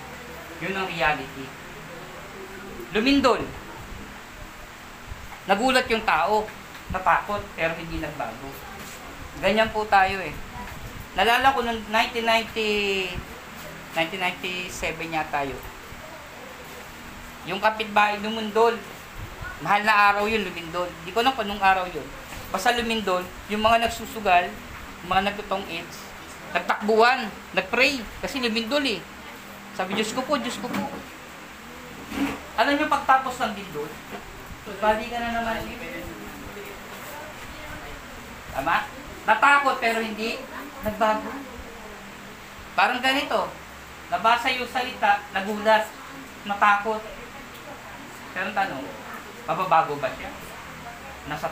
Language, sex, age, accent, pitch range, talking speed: Filipino, female, 20-39, native, 185-230 Hz, 95 wpm